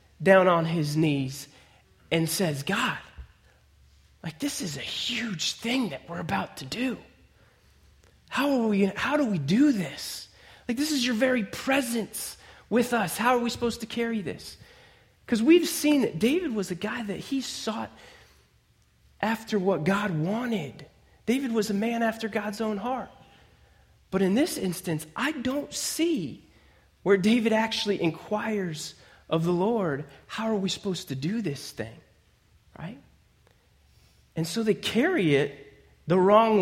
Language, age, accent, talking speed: English, 30-49, American, 155 wpm